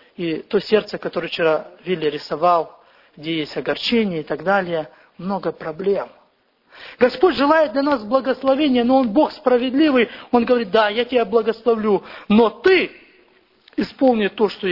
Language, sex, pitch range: English, male, 190-260 Hz